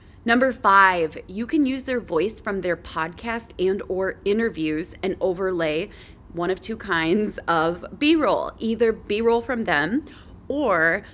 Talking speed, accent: 140 wpm, American